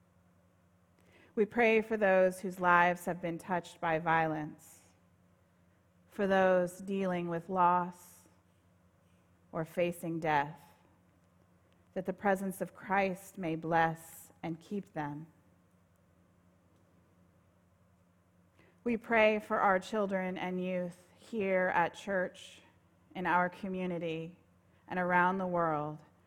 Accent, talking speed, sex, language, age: American, 105 wpm, female, English, 30-49